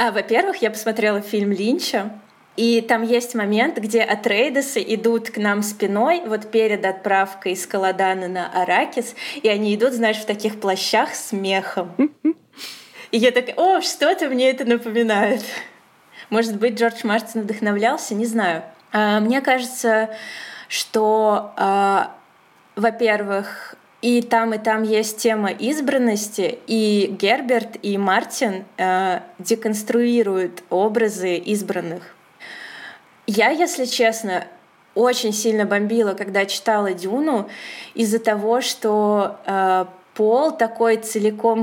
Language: Russian